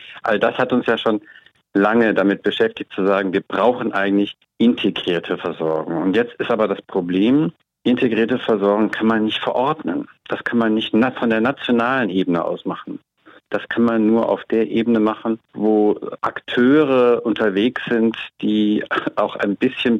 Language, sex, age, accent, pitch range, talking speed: German, male, 50-69, German, 95-115 Hz, 160 wpm